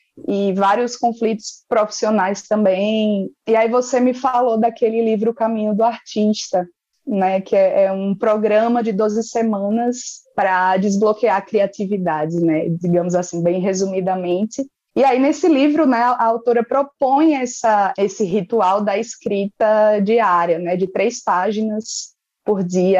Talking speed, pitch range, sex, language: 140 wpm, 200-250 Hz, female, Portuguese